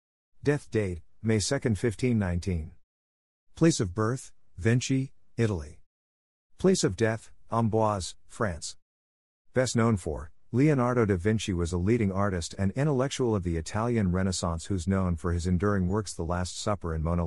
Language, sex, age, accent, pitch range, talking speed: English, male, 50-69, American, 85-115 Hz, 145 wpm